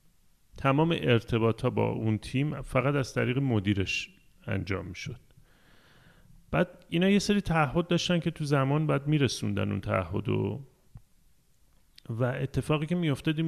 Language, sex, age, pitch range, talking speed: Persian, male, 30-49, 120-160 Hz, 140 wpm